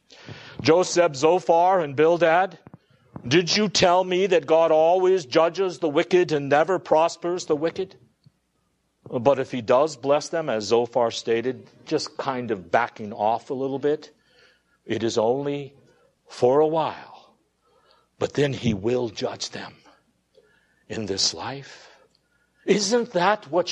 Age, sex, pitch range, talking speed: 60-79, male, 130-200 Hz, 135 wpm